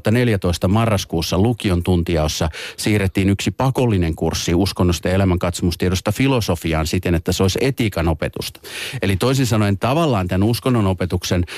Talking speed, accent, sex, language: 125 wpm, native, male, Finnish